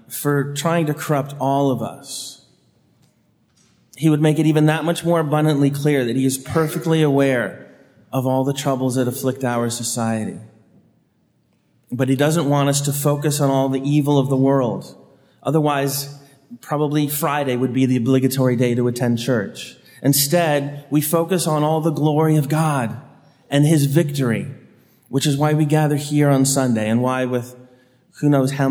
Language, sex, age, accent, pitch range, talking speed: English, male, 30-49, American, 120-145 Hz, 170 wpm